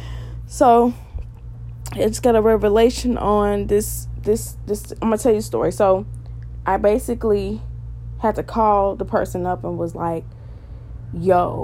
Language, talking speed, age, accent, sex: English, 145 wpm, 20-39, American, female